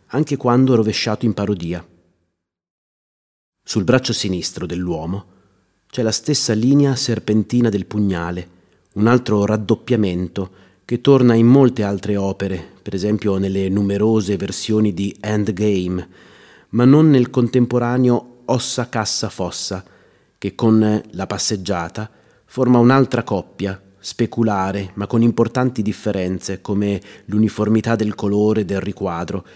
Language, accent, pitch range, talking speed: Italian, native, 95-115 Hz, 115 wpm